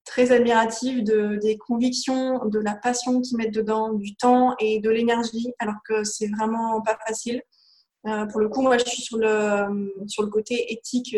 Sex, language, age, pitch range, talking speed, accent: female, French, 20-39, 215-240 Hz, 190 wpm, French